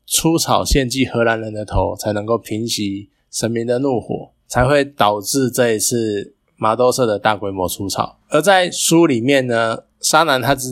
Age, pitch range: 20-39, 110-140 Hz